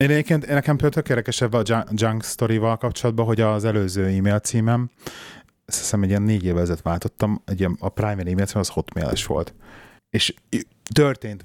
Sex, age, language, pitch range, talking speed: male, 30-49, Hungarian, 90-115 Hz, 160 wpm